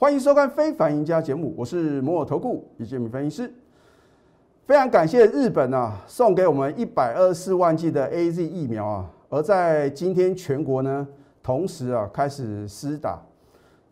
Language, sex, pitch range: Chinese, male, 125-170 Hz